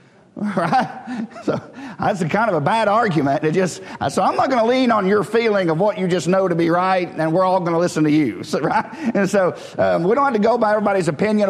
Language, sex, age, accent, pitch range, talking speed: English, male, 50-69, American, 175-225 Hz, 255 wpm